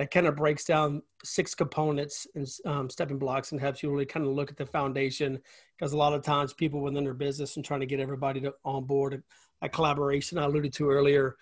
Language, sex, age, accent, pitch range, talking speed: English, male, 40-59, American, 140-160 Hz, 230 wpm